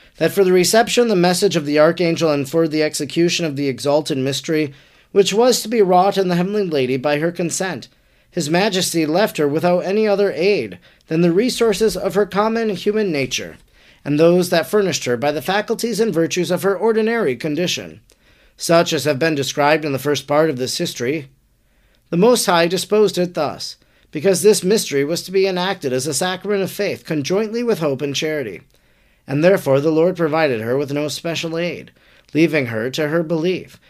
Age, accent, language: 40-59, American, English